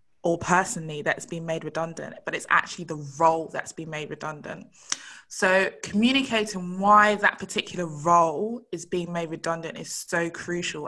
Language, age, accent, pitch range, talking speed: English, 20-39, British, 165-195 Hz, 155 wpm